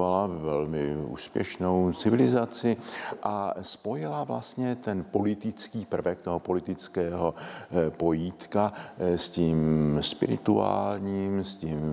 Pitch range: 85-100 Hz